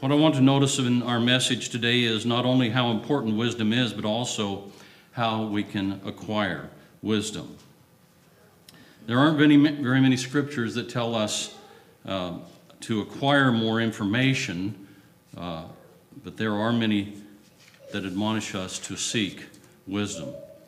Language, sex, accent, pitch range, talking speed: English, male, American, 110-145 Hz, 135 wpm